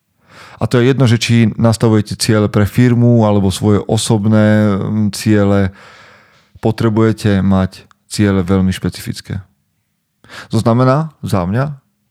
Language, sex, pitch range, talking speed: Slovak, male, 95-115 Hz, 115 wpm